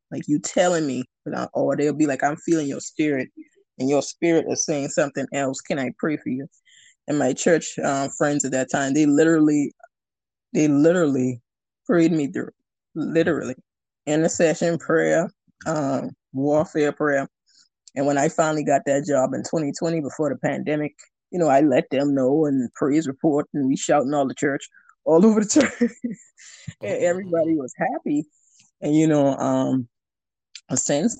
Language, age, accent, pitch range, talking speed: English, 20-39, American, 135-165 Hz, 165 wpm